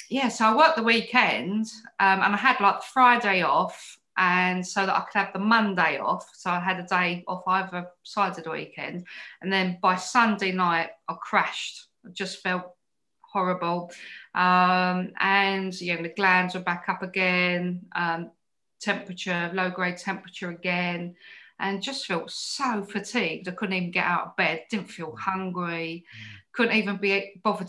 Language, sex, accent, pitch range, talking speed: English, female, British, 180-245 Hz, 165 wpm